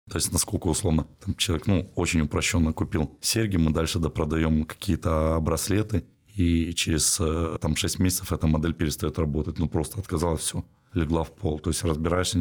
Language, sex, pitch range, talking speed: Russian, male, 80-90 Hz, 170 wpm